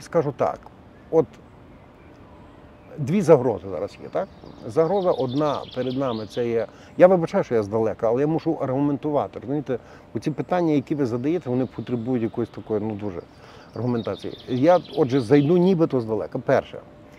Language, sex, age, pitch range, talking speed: Ukrainian, male, 50-69, 115-150 Hz, 145 wpm